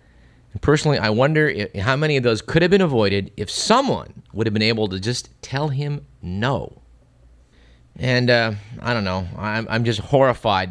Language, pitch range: English, 90-120 Hz